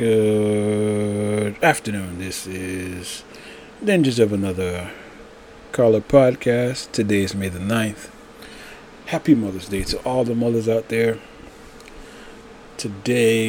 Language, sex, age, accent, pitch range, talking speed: English, male, 30-49, American, 105-120 Hz, 105 wpm